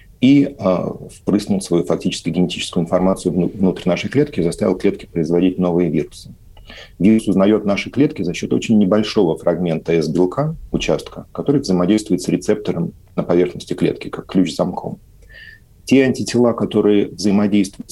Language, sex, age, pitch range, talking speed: Russian, male, 40-59, 85-105 Hz, 135 wpm